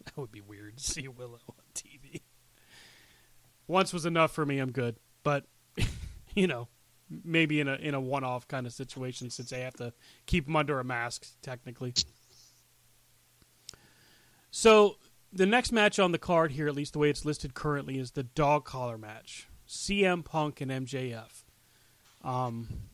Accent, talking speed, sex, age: American, 165 wpm, male, 30-49